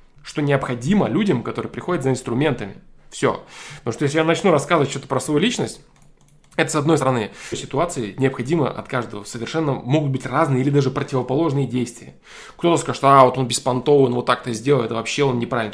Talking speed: 190 wpm